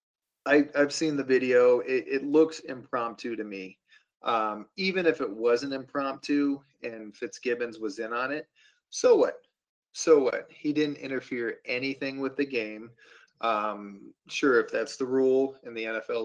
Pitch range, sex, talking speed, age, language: 120-165 Hz, male, 160 wpm, 30-49, English